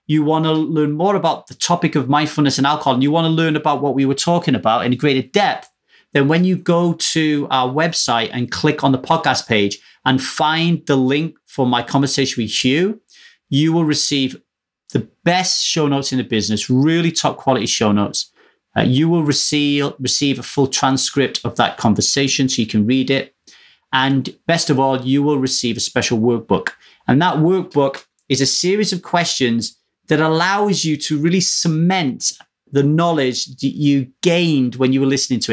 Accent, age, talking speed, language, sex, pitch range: British, 30-49, 190 wpm, English, male, 130-165 Hz